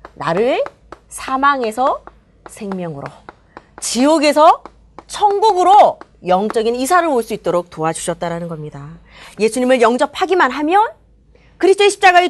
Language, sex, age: Korean, female, 30-49